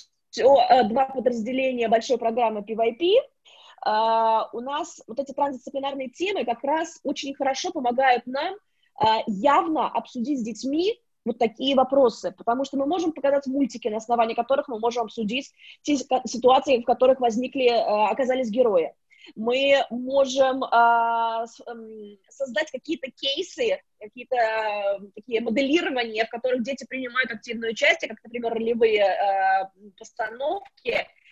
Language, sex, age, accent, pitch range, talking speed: Russian, female, 20-39, native, 230-280 Hz, 120 wpm